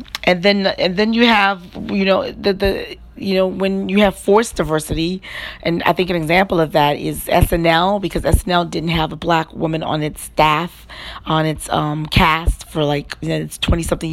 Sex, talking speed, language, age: female, 185 wpm, English, 40-59